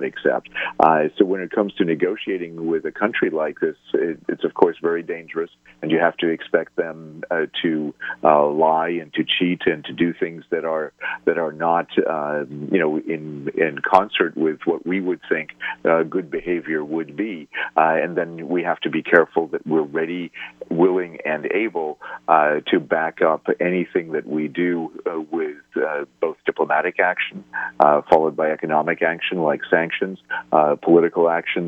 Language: English